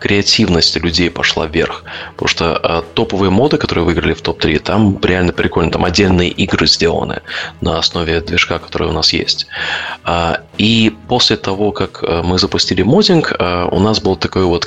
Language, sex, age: Russian, male, 20-39